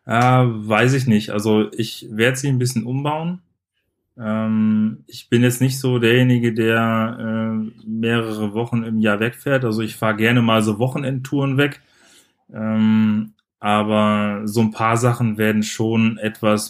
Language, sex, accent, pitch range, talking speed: German, male, German, 110-125 Hz, 150 wpm